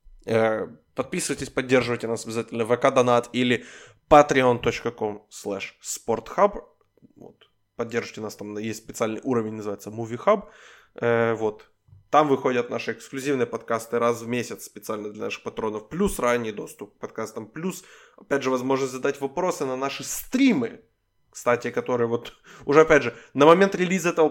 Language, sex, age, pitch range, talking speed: Ukrainian, male, 20-39, 115-145 Hz, 135 wpm